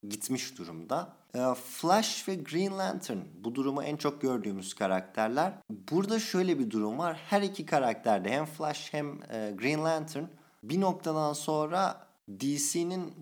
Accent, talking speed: native, 130 wpm